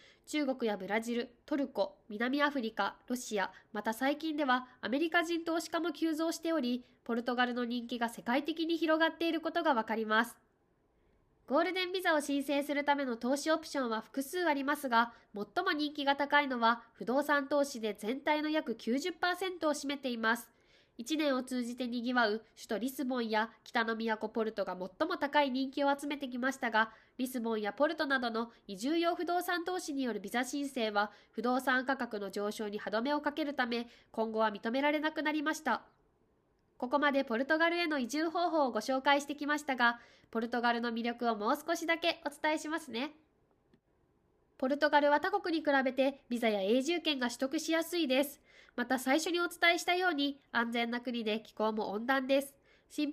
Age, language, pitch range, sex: 20-39, Japanese, 235-310 Hz, female